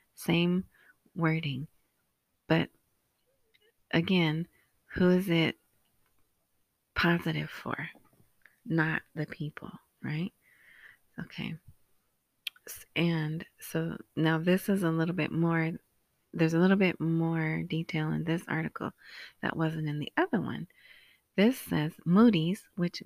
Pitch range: 160-180 Hz